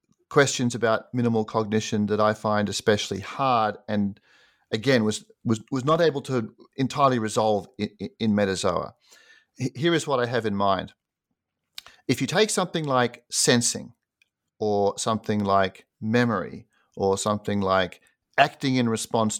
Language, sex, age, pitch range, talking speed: English, male, 40-59, 100-135 Hz, 140 wpm